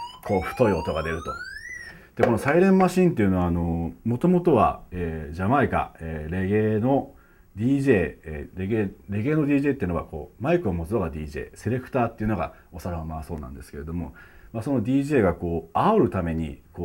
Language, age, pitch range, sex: Japanese, 40-59, 85-135 Hz, male